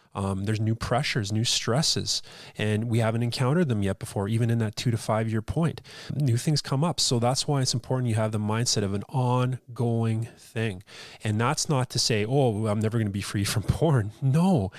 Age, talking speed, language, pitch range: 30-49, 215 wpm, English, 105-125 Hz